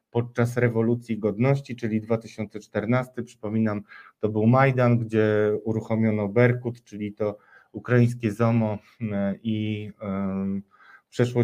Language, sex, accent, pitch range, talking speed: Polish, male, native, 110-140 Hz, 95 wpm